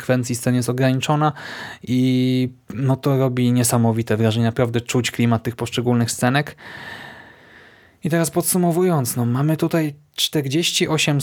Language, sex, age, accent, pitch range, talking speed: Polish, male, 20-39, native, 115-135 Hz, 110 wpm